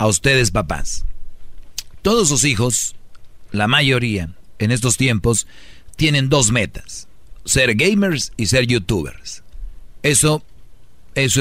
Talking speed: 110 wpm